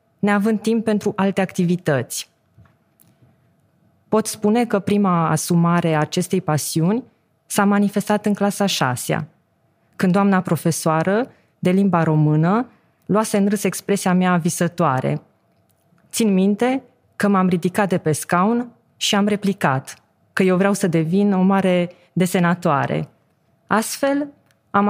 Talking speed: 125 wpm